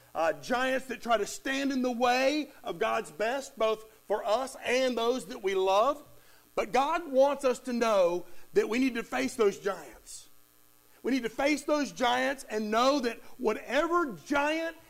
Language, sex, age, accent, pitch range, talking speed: English, male, 50-69, American, 205-280 Hz, 175 wpm